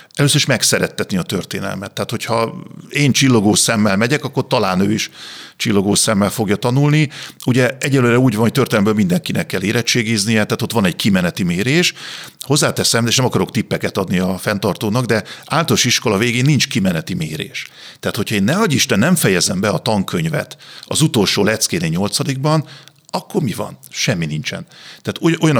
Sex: male